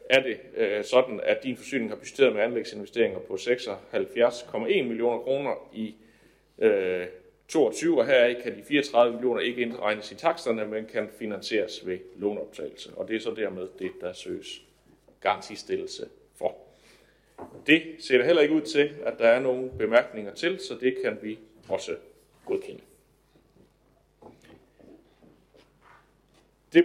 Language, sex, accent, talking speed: Danish, male, native, 140 wpm